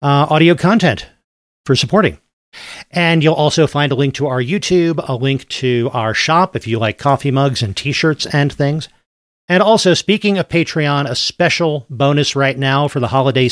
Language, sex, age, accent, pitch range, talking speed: English, male, 40-59, American, 125-160 Hz, 180 wpm